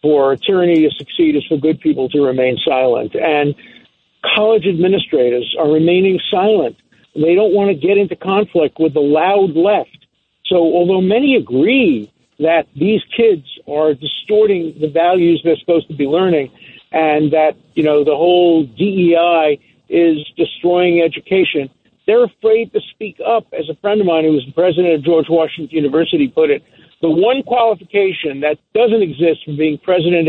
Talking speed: 165 wpm